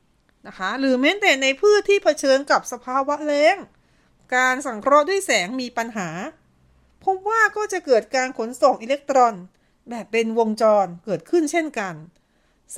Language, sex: Thai, female